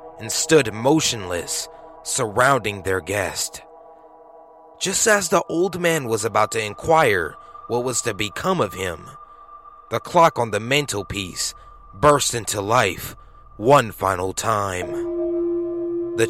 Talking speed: 120 wpm